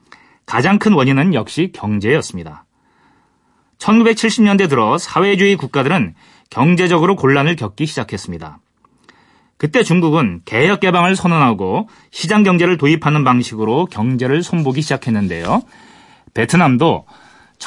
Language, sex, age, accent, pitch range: Korean, male, 30-49, native, 130-195 Hz